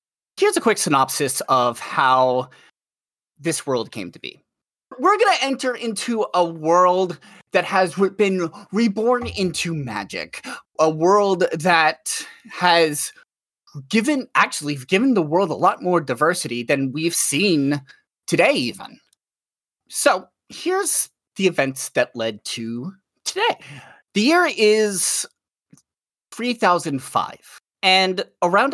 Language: English